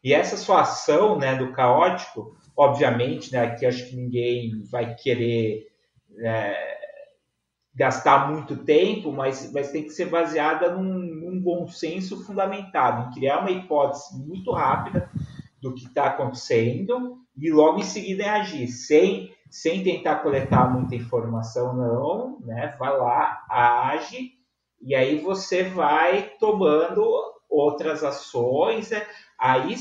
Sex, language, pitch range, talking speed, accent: male, Portuguese, 125-195 Hz, 135 wpm, Brazilian